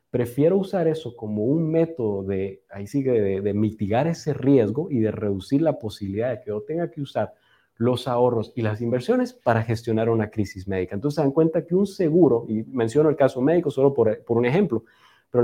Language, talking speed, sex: Spanish, 205 wpm, male